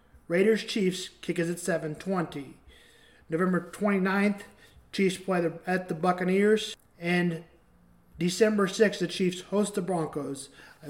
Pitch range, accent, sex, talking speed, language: 175-210 Hz, American, male, 115 wpm, English